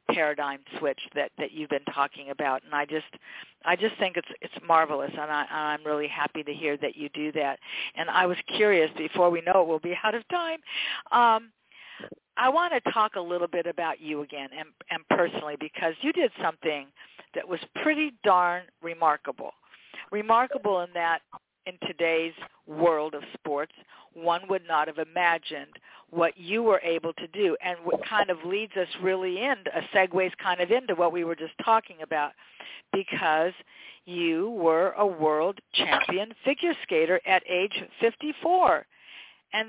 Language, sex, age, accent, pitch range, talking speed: English, female, 50-69, American, 160-230 Hz, 175 wpm